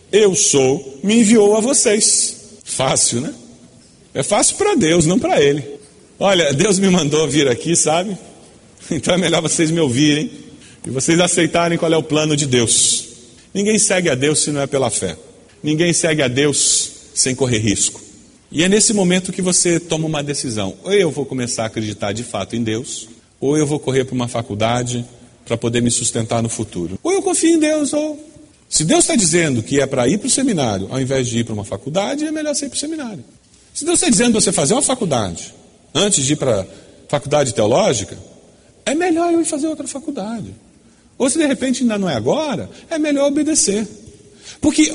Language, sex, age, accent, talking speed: Portuguese, male, 40-59, Brazilian, 200 wpm